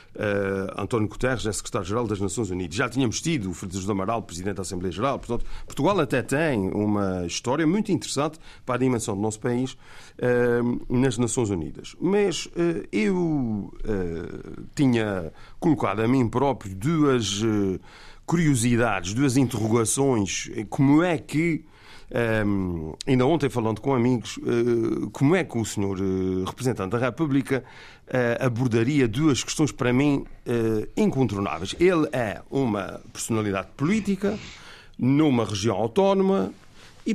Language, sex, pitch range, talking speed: Portuguese, male, 105-150 Hz, 130 wpm